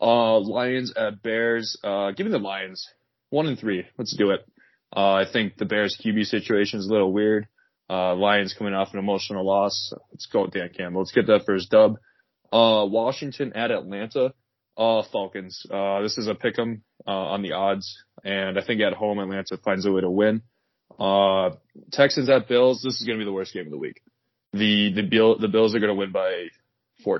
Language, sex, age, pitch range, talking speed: English, male, 20-39, 100-115 Hz, 205 wpm